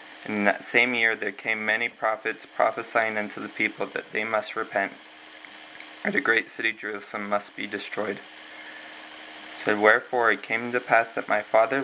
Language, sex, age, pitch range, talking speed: English, male, 20-39, 105-120 Hz, 170 wpm